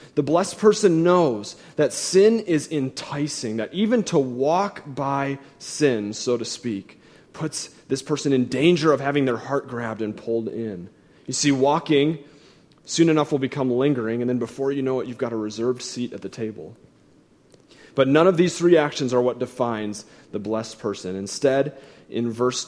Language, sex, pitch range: English, male, 115-150 Hz